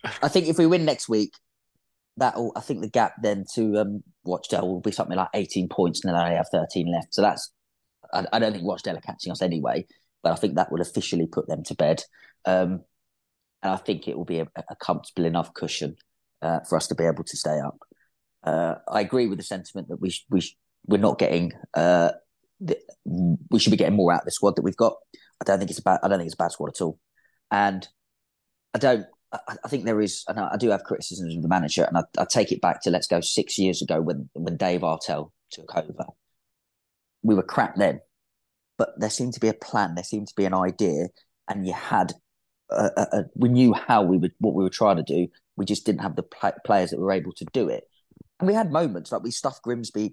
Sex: male